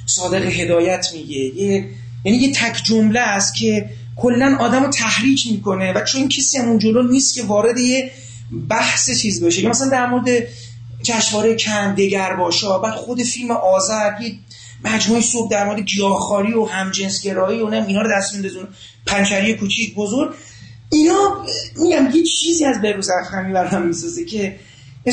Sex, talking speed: male, 155 wpm